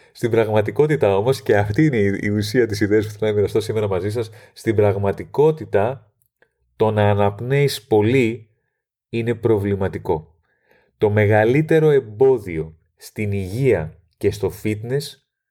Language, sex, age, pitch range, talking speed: Greek, male, 30-49, 105-130 Hz, 130 wpm